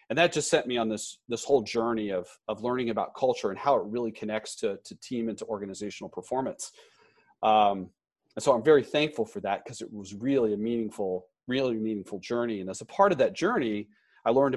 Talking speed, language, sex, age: 220 wpm, English, male, 40-59